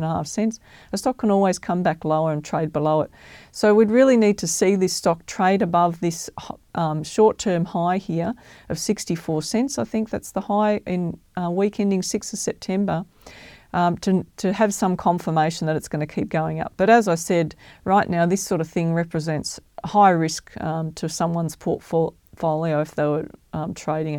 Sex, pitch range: female, 160-195 Hz